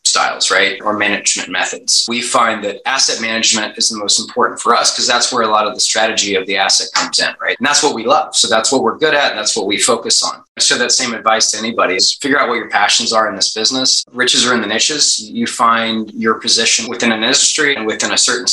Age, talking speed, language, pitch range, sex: 20-39, 255 wpm, English, 110-130 Hz, male